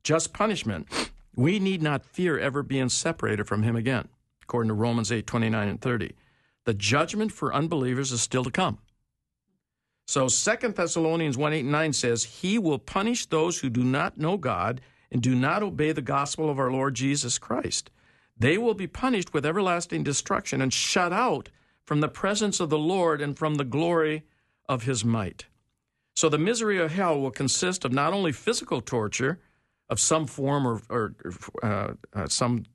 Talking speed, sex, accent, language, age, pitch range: 180 wpm, male, American, English, 60-79, 125-165 Hz